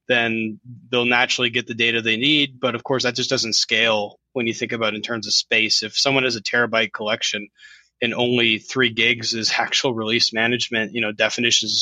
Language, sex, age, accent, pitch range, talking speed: English, male, 20-39, American, 110-130 Hz, 210 wpm